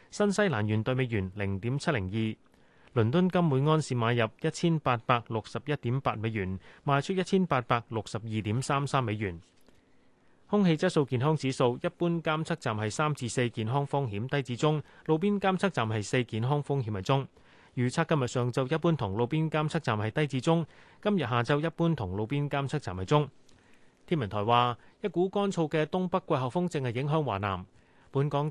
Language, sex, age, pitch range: Chinese, male, 30-49, 115-155 Hz